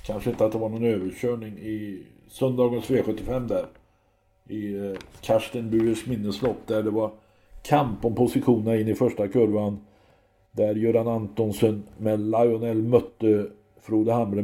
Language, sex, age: Swedish, male, 50-69